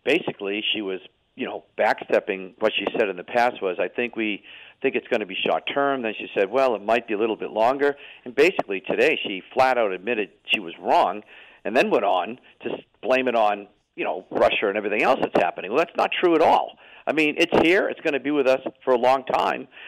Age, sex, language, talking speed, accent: 50-69, male, English, 240 wpm, American